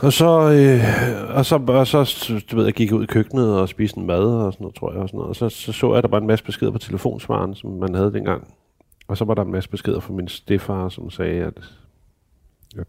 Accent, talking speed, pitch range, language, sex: native, 260 wpm, 95-120 Hz, Danish, male